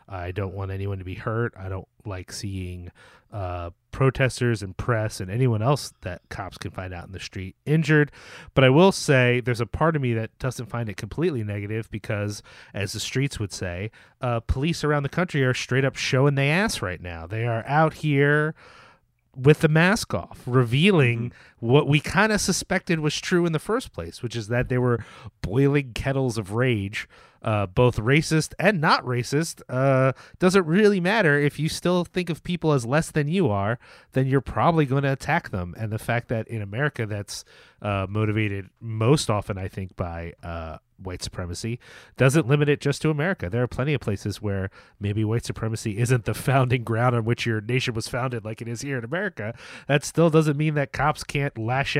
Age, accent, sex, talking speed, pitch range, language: 30-49, American, male, 200 wpm, 105-145 Hz, English